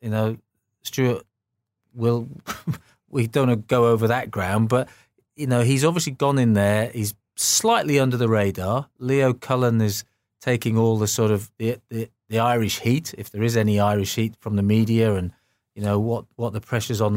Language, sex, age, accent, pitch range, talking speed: English, male, 30-49, British, 105-125 Hz, 190 wpm